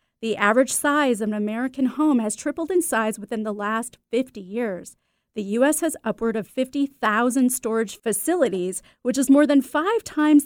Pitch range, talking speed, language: 215-285 Hz, 170 wpm, English